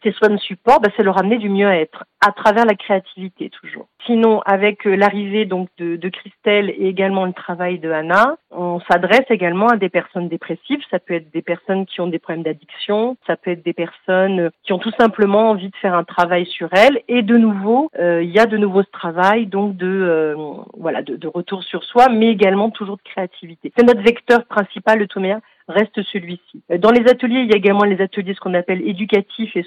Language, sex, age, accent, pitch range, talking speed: French, female, 40-59, French, 175-210 Hz, 220 wpm